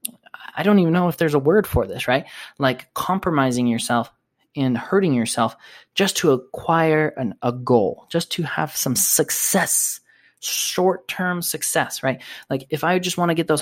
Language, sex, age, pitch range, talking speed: English, male, 20-39, 120-150 Hz, 170 wpm